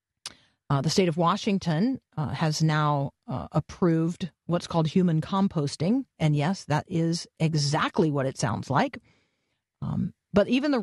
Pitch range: 150-195 Hz